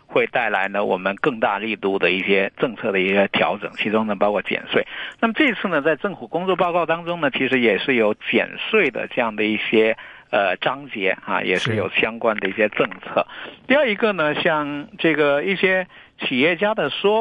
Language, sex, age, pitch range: Chinese, male, 50-69, 110-165 Hz